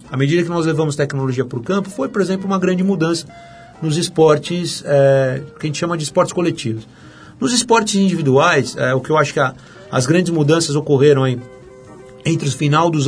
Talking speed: 200 wpm